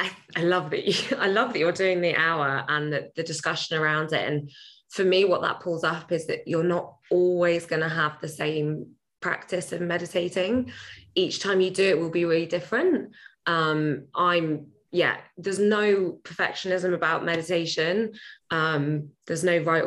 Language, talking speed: English, 165 wpm